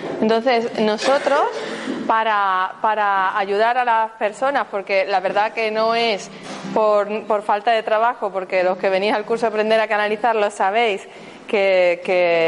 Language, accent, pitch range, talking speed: Spanish, Spanish, 210-250 Hz, 155 wpm